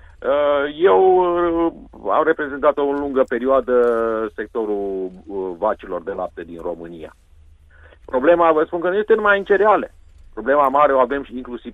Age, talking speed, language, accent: 40-59, 140 wpm, Romanian, native